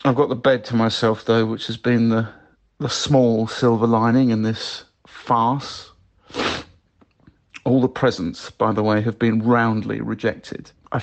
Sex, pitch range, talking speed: male, 110-130 Hz, 160 wpm